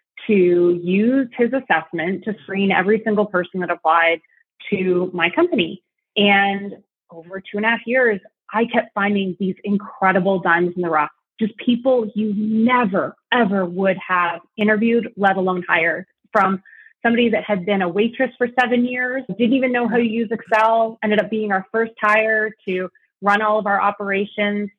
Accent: American